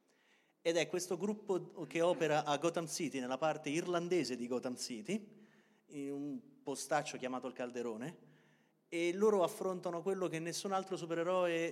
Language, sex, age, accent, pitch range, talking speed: Italian, male, 30-49, native, 135-190 Hz, 150 wpm